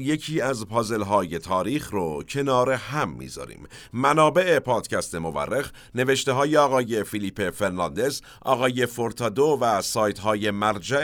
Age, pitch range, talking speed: 50-69, 100-140 Hz, 125 wpm